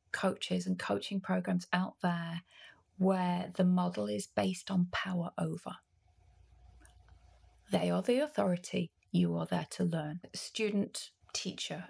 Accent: British